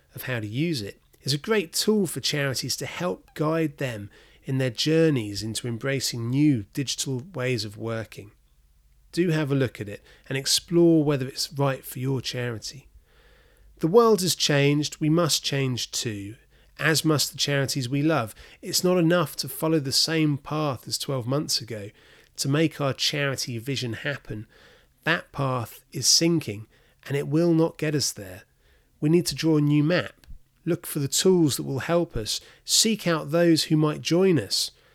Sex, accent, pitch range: male, British, 125-160 Hz